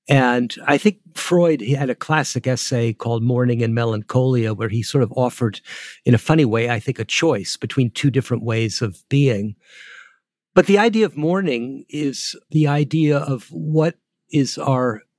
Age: 50-69